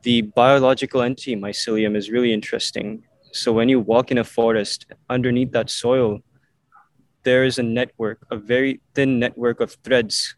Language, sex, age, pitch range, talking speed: English, male, 20-39, 115-130 Hz, 155 wpm